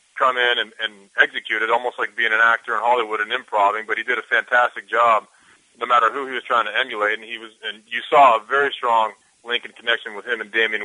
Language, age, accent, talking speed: English, 30-49, American, 250 wpm